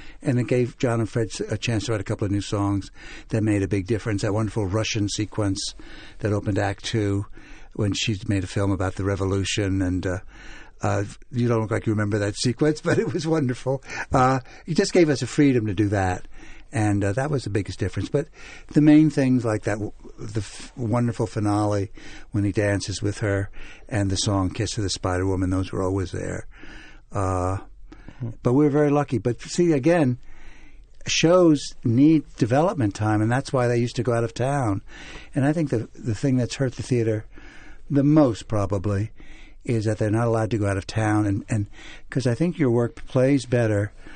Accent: American